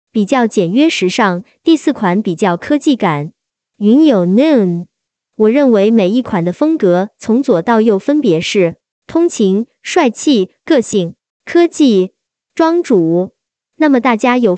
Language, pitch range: Chinese, 195-280 Hz